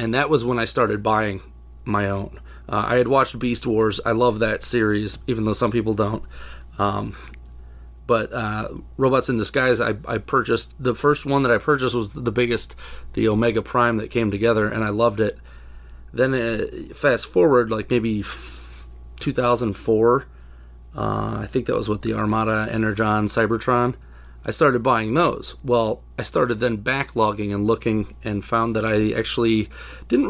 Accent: American